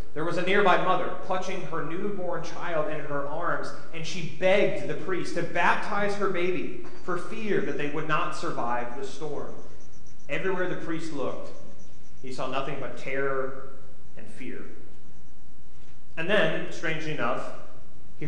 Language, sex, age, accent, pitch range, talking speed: English, male, 30-49, American, 140-185 Hz, 150 wpm